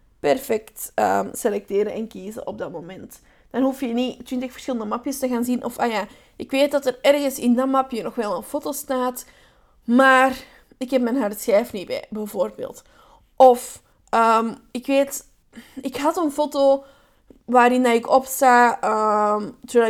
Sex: female